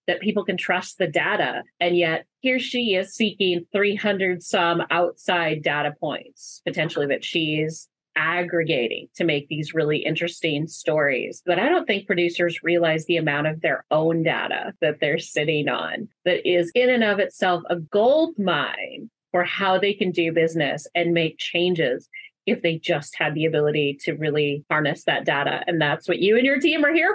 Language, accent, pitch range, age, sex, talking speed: English, American, 160-200 Hz, 30-49, female, 175 wpm